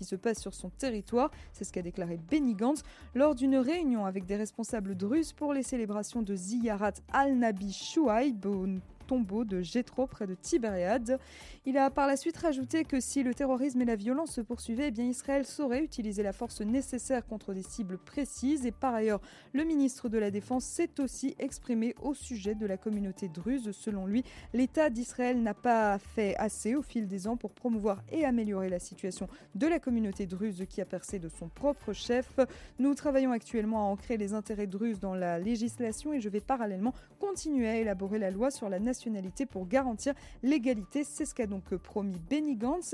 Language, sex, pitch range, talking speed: French, female, 205-270 Hz, 190 wpm